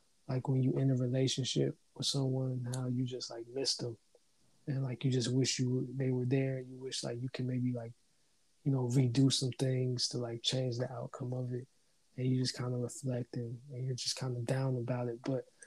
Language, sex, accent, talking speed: English, male, American, 230 wpm